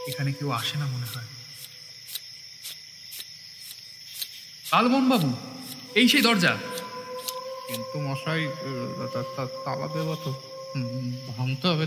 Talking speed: 65 wpm